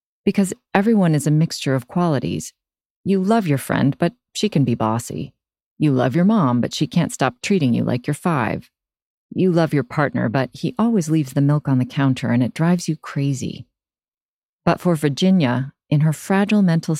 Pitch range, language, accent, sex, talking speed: 125-170 Hz, English, American, female, 190 wpm